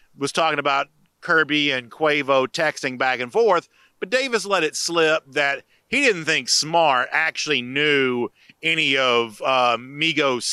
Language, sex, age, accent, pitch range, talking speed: English, male, 40-59, American, 130-165 Hz, 150 wpm